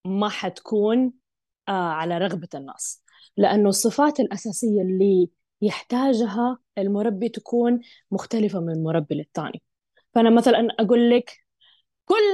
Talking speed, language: 100 wpm, Arabic